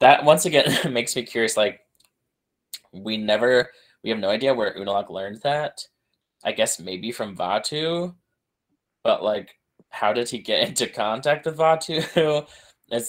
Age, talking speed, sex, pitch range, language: 20-39, 150 wpm, male, 105-145 Hz, English